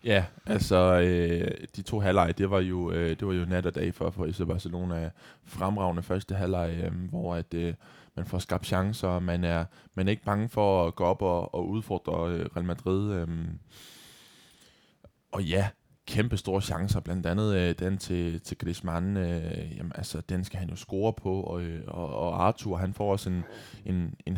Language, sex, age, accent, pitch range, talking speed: Danish, male, 20-39, native, 85-100 Hz, 195 wpm